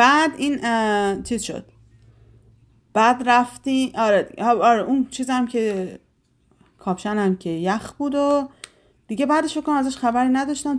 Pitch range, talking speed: 185-260 Hz, 120 wpm